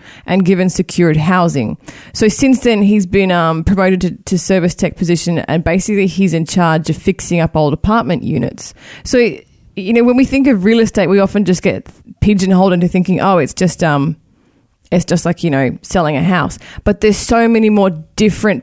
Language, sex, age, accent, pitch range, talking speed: English, female, 20-39, Australian, 165-210 Hz, 195 wpm